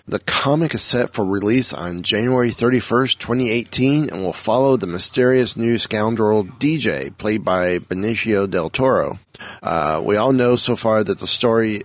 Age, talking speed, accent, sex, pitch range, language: 30-49, 160 wpm, American, male, 100-125 Hz, English